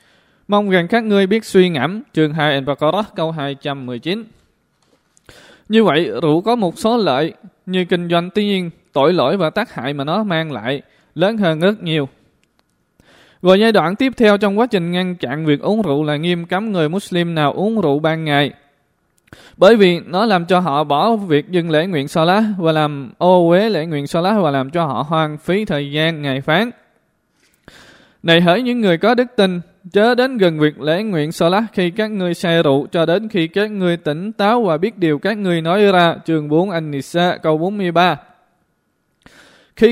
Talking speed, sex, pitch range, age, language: 195 wpm, male, 150-200 Hz, 20-39, Vietnamese